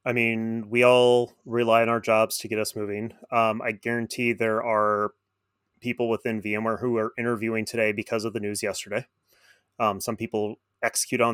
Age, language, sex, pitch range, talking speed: 30-49, English, male, 100-120 Hz, 180 wpm